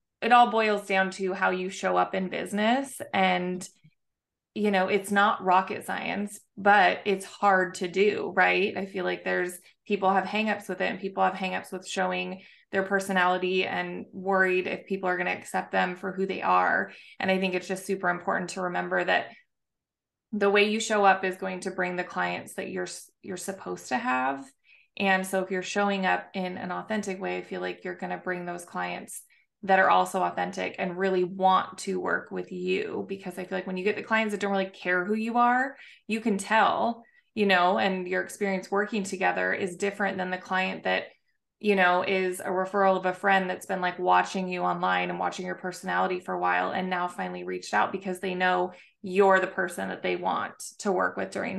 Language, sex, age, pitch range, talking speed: English, female, 20-39, 180-200 Hz, 210 wpm